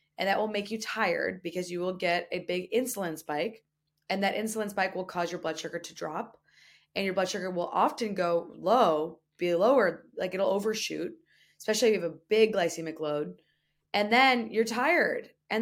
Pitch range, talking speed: 155-210 Hz, 195 wpm